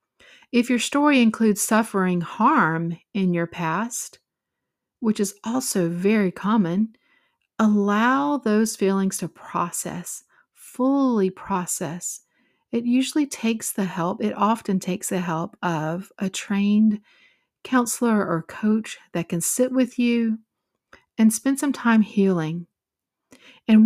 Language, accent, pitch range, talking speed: English, American, 190-245 Hz, 120 wpm